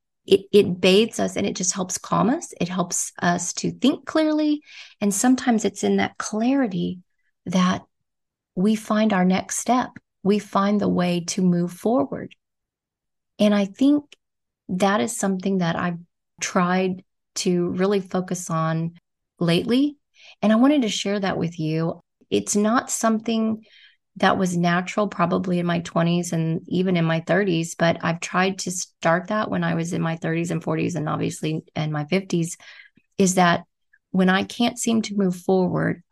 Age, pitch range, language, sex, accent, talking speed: 30-49, 170-210 Hz, English, female, American, 165 wpm